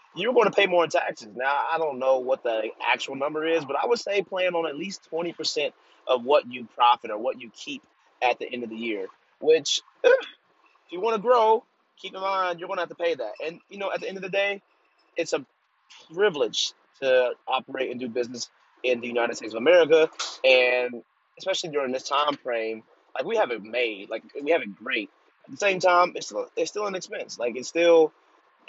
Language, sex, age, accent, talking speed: English, male, 30-49, American, 225 wpm